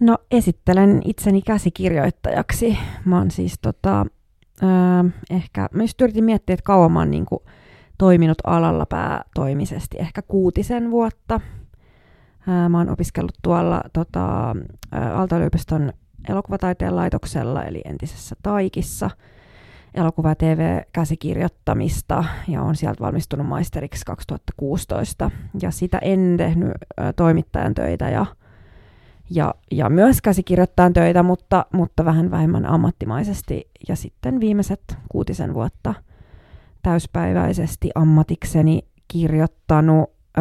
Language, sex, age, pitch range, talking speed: Finnish, female, 20-39, 155-185 Hz, 105 wpm